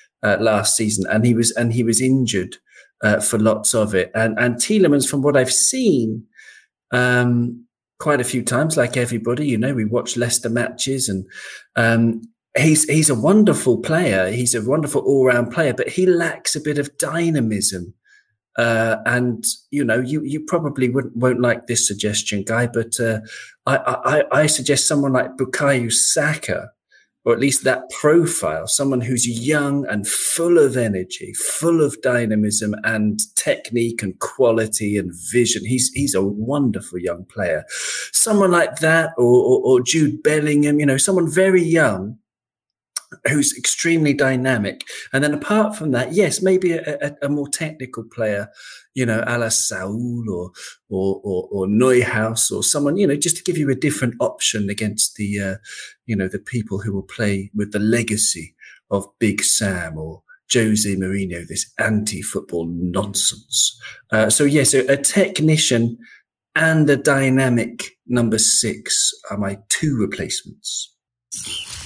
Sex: male